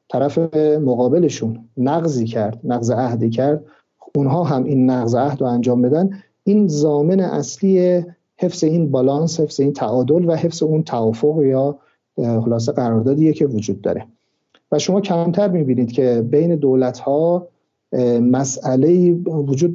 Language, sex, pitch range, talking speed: Persian, male, 130-165 Hz, 130 wpm